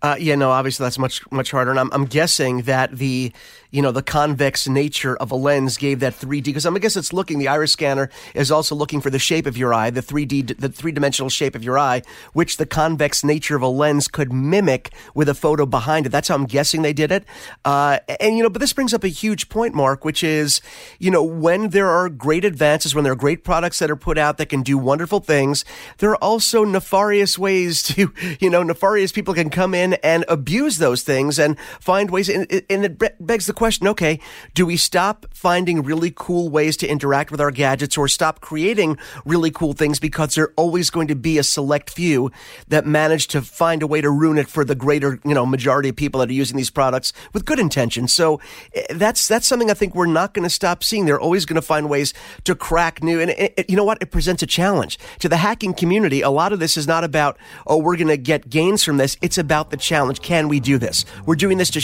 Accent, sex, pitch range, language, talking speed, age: American, male, 140-180 Hz, English, 240 wpm, 30-49